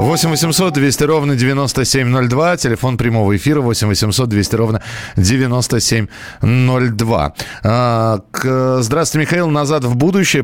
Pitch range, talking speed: 125-155 Hz, 115 wpm